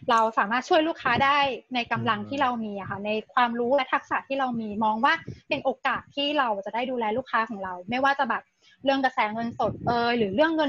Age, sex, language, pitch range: 20-39, female, Thai, 225-280 Hz